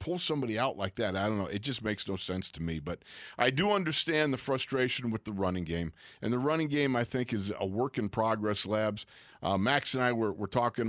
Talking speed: 240 wpm